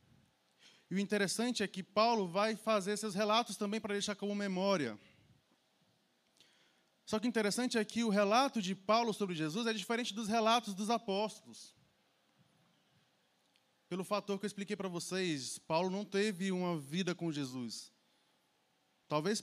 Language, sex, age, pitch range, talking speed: Portuguese, male, 20-39, 185-225 Hz, 150 wpm